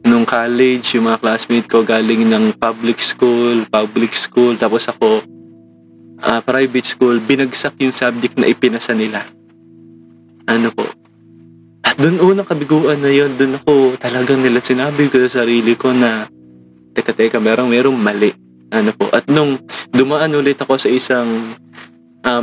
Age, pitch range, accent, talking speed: 20-39, 110-130 Hz, Filipino, 150 wpm